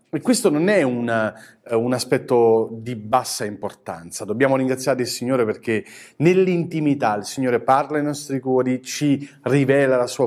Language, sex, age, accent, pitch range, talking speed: Italian, male, 40-59, native, 115-150 Hz, 140 wpm